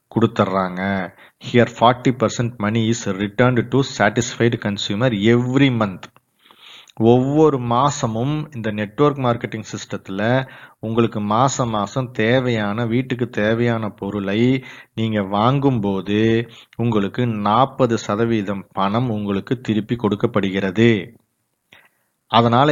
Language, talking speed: Tamil, 70 wpm